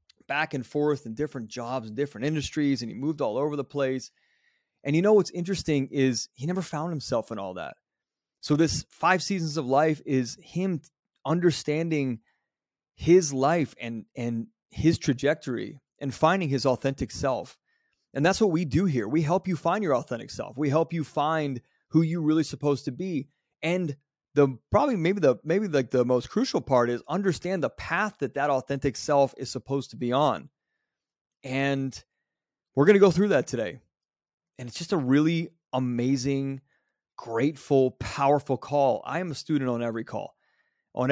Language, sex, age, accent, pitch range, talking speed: English, male, 30-49, American, 125-160 Hz, 175 wpm